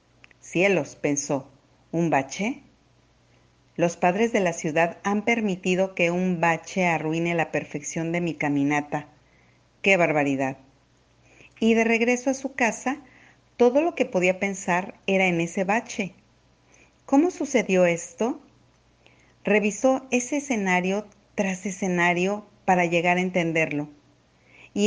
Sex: female